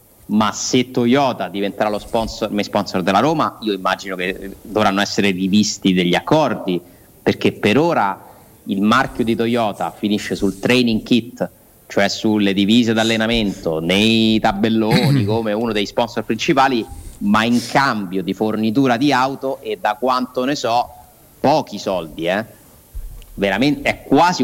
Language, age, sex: Italian, 30-49, male